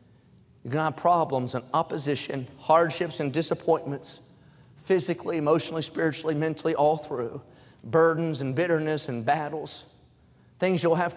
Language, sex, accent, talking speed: English, male, American, 130 wpm